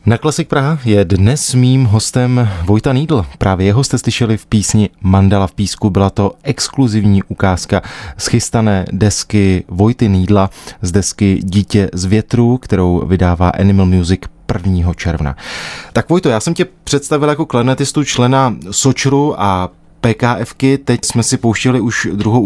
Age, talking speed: 20-39, 145 wpm